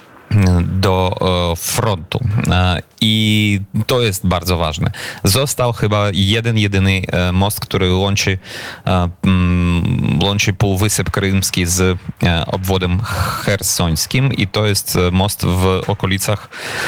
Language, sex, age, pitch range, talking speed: Polish, male, 30-49, 95-110 Hz, 90 wpm